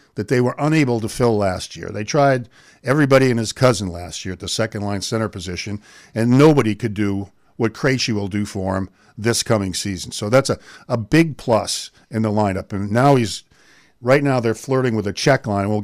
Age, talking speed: 50-69, 210 wpm